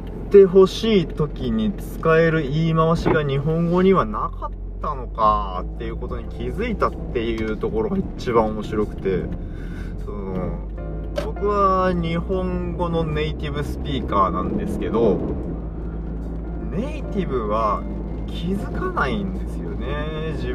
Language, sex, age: Japanese, male, 20-39